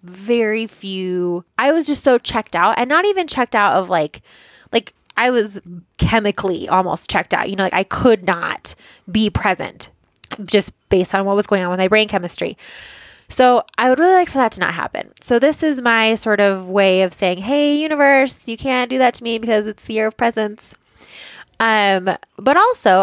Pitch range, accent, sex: 185-230 Hz, American, female